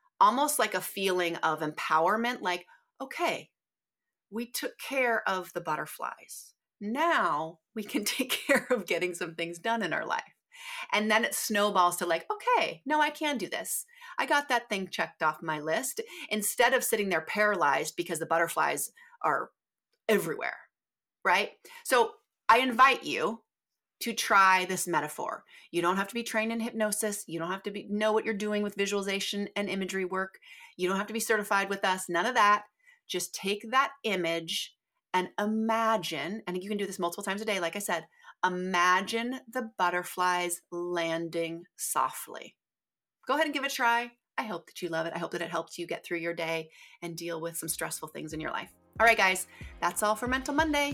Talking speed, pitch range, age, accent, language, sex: 190 wpm, 175-235 Hz, 30-49, American, English, female